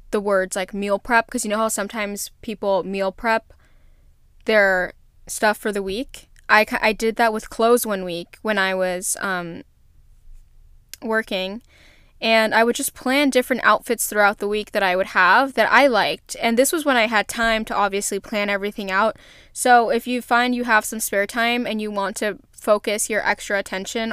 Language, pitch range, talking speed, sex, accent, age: English, 195-225 Hz, 190 wpm, female, American, 10-29